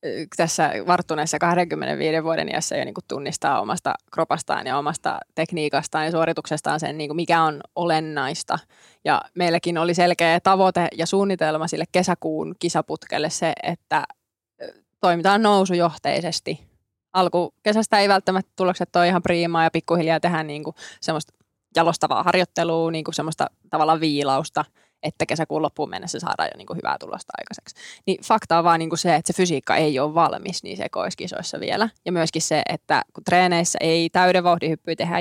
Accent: native